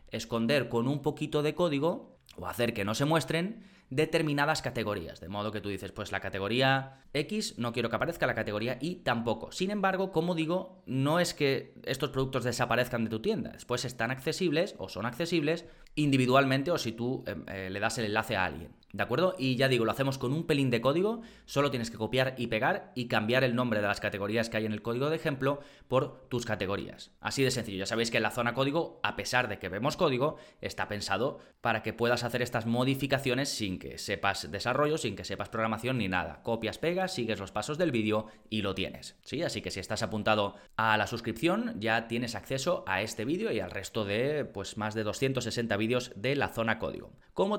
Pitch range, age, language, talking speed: 110-145 Hz, 20-39, Spanish, 215 wpm